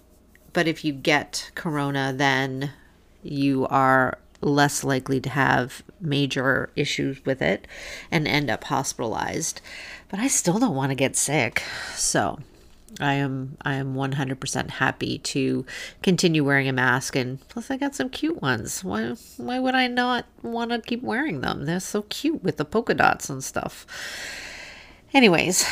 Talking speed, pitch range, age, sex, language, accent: 155 wpm, 135-190 Hz, 40-59, female, English, American